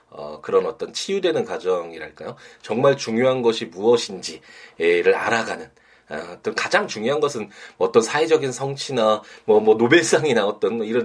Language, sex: Korean, male